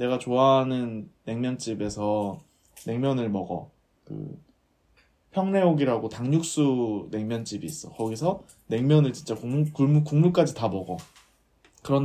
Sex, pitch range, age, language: male, 110-155 Hz, 20-39, Korean